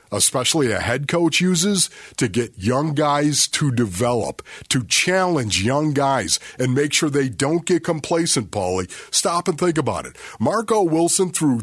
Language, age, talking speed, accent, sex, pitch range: English, 50-69, 160 wpm, American, male, 115-155 Hz